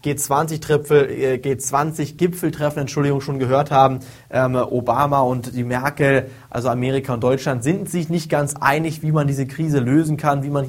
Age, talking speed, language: 20-39, 150 wpm, German